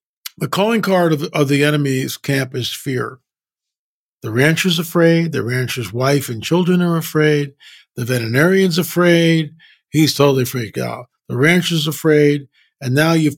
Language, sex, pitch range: English, male, 130-160 Hz